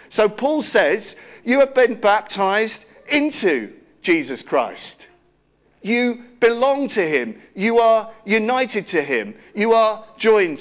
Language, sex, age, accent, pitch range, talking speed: English, male, 50-69, British, 165-250 Hz, 125 wpm